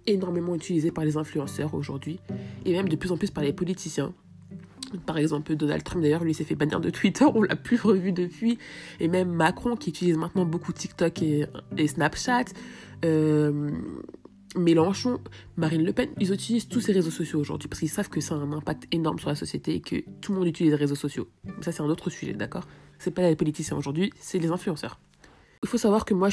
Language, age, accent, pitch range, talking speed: French, 20-39, French, 150-180 Hz, 215 wpm